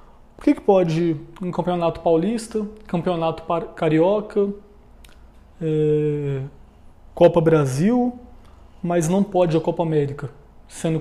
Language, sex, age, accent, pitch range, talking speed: Portuguese, male, 20-39, Brazilian, 160-195 Hz, 95 wpm